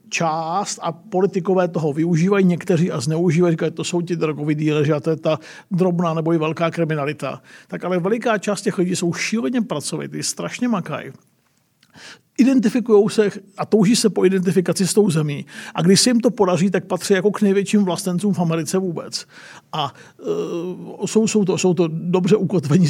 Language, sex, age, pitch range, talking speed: Czech, male, 50-69, 170-210 Hz, 180 wpm